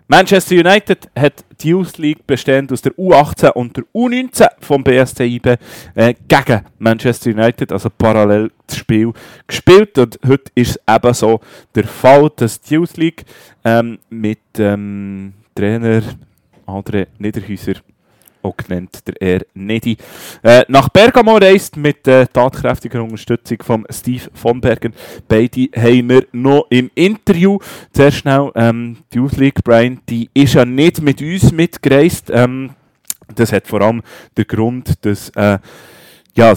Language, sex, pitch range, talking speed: German, male, 110-140 Hz, 145 wpm